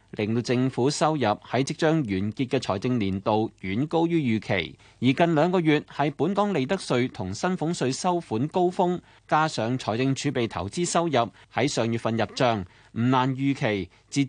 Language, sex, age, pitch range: Chinese, male, 30-49, 110-160 Hz